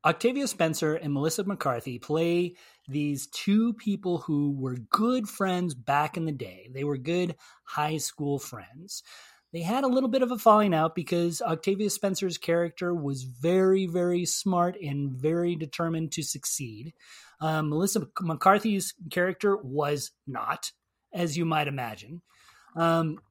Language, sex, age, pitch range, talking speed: English, male, 30-49, 150-195 Hz, 145 wpm